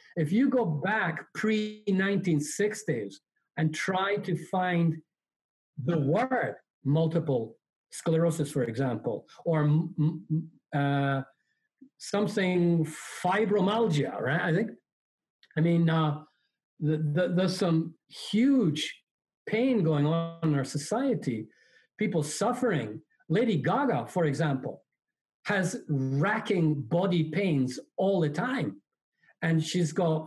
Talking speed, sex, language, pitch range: 100 wpm, male, English, 150-200 Hz